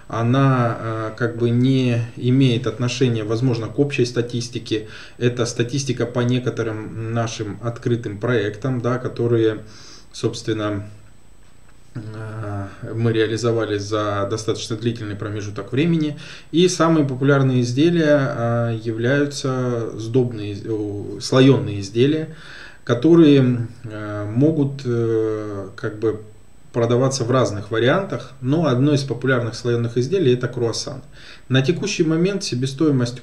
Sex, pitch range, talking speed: male, 110-130 Hz, 100 wpm